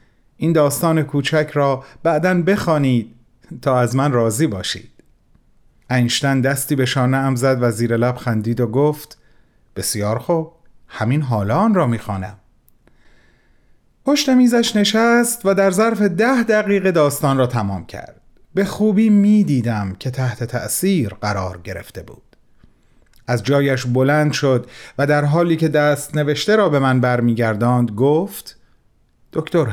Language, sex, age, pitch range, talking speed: Persian, male, 30-49, 120-175 Hz, 135 wpm